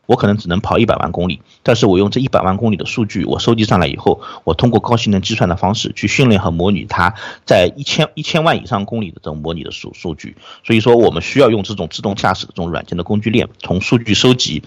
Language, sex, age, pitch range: Chinese, male, 50-69, 90-110 Hz